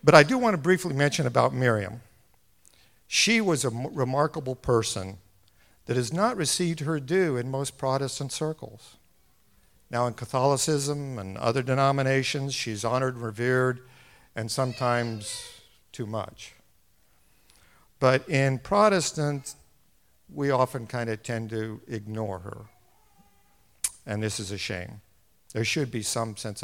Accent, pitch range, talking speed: American, 110-145 Hz, 135 wpm